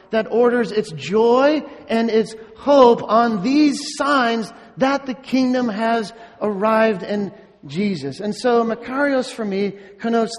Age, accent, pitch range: 40-59, American, 215-255 Hz